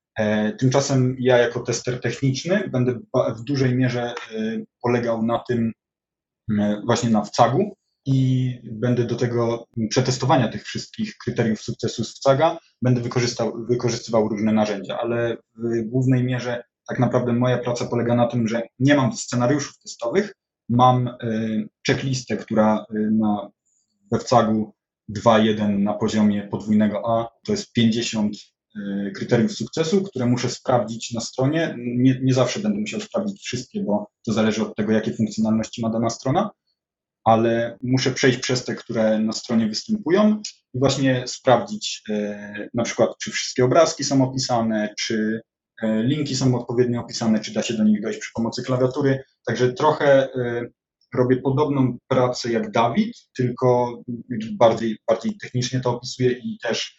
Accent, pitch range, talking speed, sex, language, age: native, 115-130 Hz, 140 wpm, male, Polish, 20-39